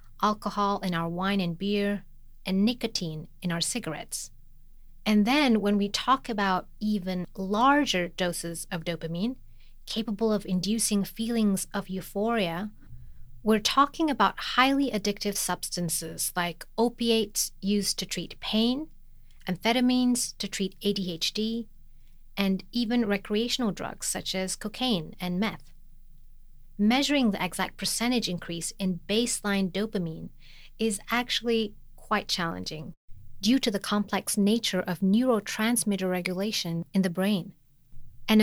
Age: 30-49